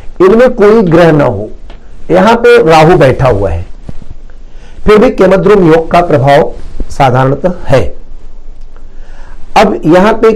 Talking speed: 120 wpm